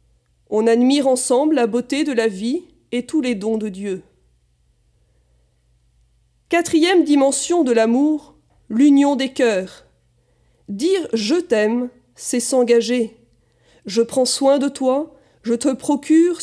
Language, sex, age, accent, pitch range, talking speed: French, female, 40-59, French, 220-285 Hz, 130 wpm